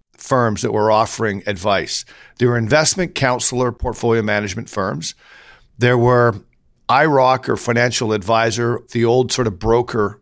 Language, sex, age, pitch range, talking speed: English, male, 50-69, 115-140 Hz, 135 wpm